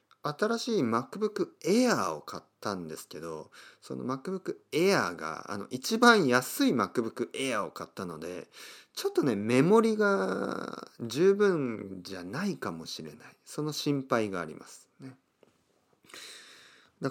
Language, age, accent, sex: Japanese, 40-59, native, male